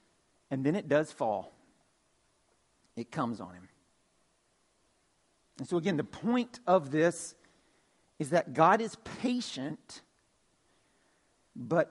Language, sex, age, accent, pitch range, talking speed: English, male, 40-59, American, 150-200 Hz, 110 wpm